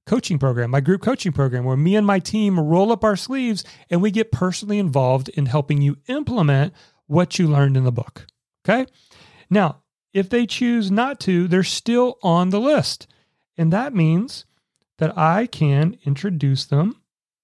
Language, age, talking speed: English, 40-59, 170 wpm